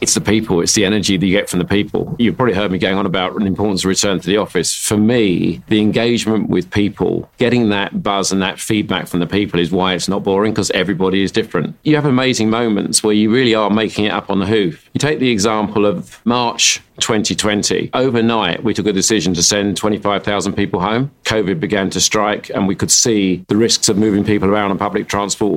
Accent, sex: British, male